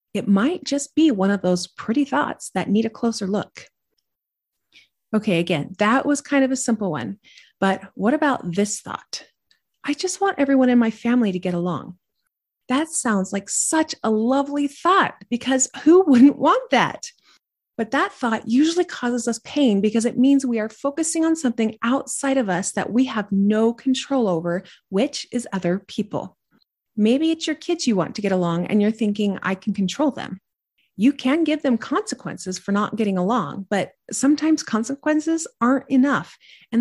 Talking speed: 180 wpm